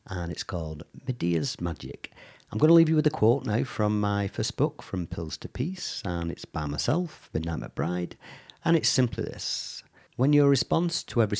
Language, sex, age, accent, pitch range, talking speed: English, male, 50-69, British, 85-135 Hz, 205 wpm